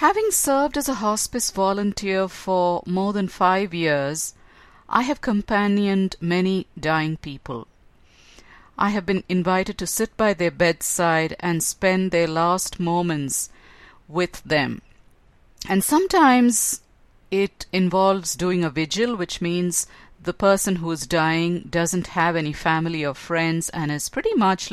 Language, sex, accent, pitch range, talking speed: English, female, Indian, 165-195 Hz, 140 wpm